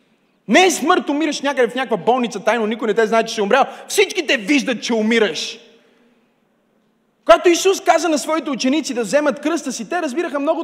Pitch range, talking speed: 225-325 Hz, 190 wpm